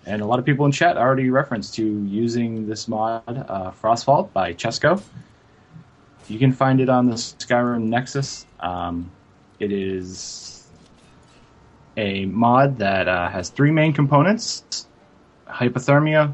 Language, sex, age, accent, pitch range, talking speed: English, male, 20-39, American, 105-135 Hz, 135 wpm